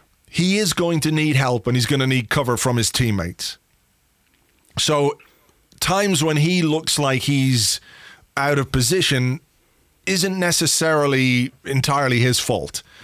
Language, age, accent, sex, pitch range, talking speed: English, 30-49, British, male, 115-145 Hz, 140 wpm